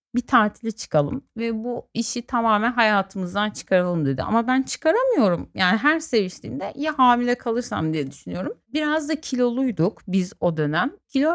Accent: native